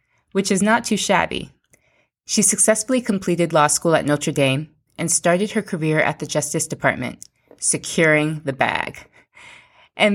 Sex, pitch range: female, 145-180 Hz